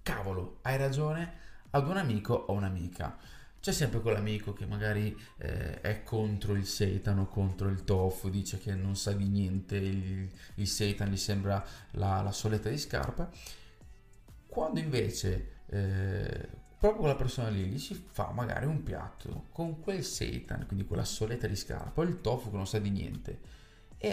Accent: native